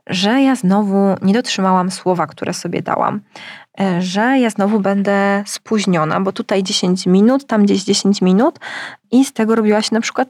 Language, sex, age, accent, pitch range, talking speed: Polish, female, 20-39, native, 195-275 Hz, 170 wpm